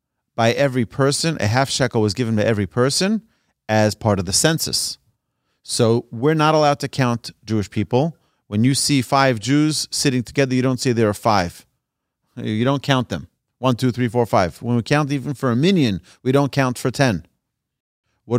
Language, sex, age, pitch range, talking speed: English, male, 40-59, 105-135 Hz, 195 wpm